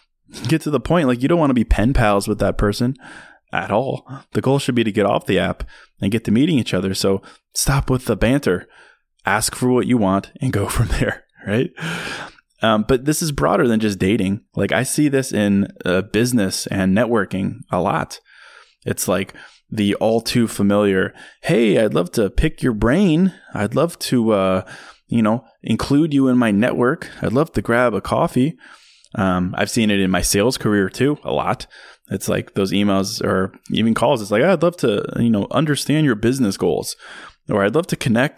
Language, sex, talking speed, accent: English, male, 205 wpm, American